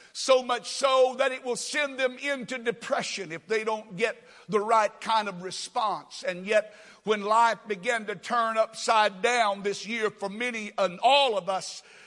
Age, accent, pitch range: 60-79, American, 210-265 Hz